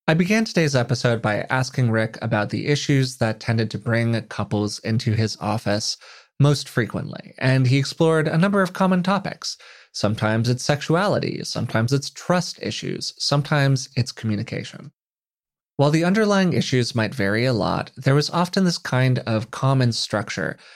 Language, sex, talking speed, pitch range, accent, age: English, male, 155 wpm, 110-145 Hz, American, 30-49